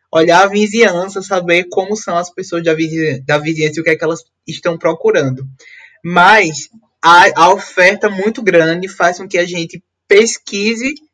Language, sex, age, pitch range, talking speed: Portuguese, male, 20-39, 160-205 Hz, 155 wpm